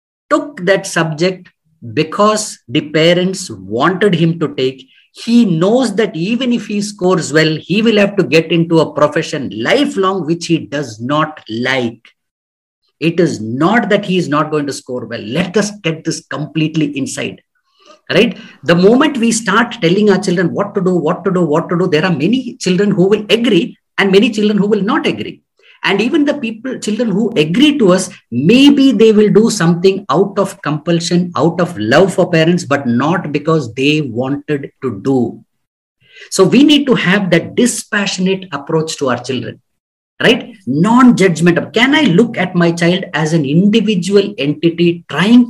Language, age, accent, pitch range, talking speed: English, 50-69, Indian, 155-215 Hz, 175 wpm